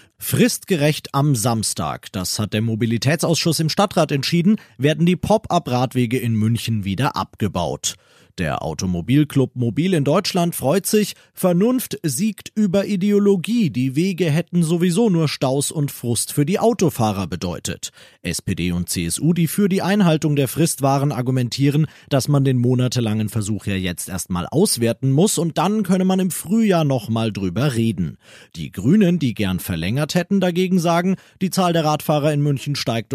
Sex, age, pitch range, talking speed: male, 40-59, 110-175 Hz, 155 wpm